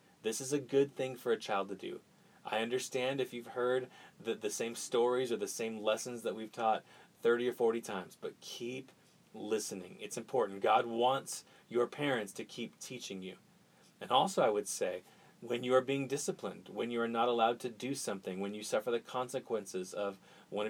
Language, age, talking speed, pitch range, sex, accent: English, 30-49, 195 wpm, 105-130 Hz, male, American